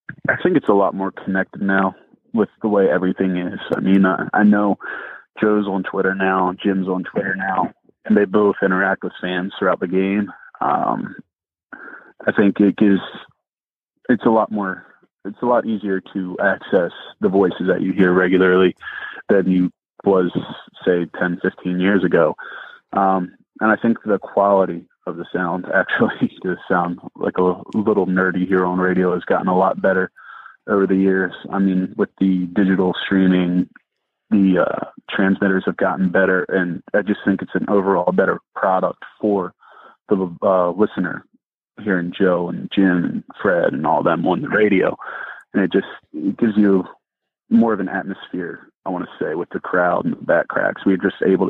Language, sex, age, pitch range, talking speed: English, male, 20-39, 90-100 Hz, 175 wpm